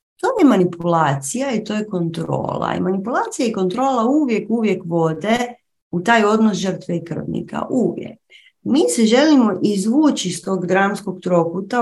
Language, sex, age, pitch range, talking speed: Croatian, female, 30-49, 175-255 Hz, 145 wpm